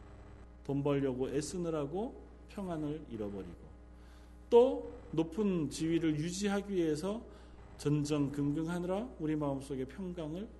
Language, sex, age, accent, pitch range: Korean, male, 40-59, native, 130-190 Hz